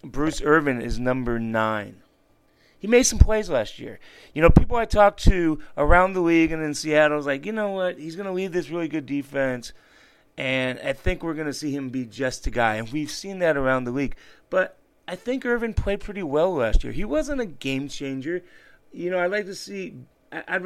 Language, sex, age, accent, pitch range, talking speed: English, male, 30-49, American, 125-165 Hz, 220 wpm